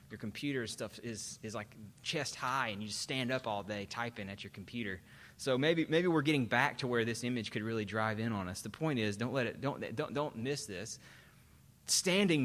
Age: 30-49